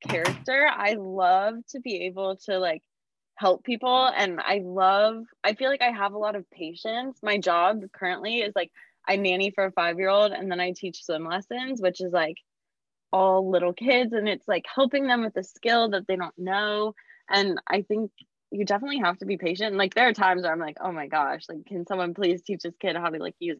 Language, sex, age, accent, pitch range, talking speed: English, female, 20-39, American, 180-225 Hz, 225 wpm